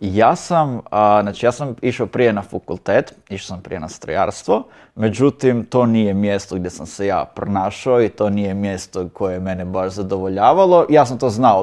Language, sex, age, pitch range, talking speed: Croatian, male, 30-49, 100-125 Hz, 180 wpm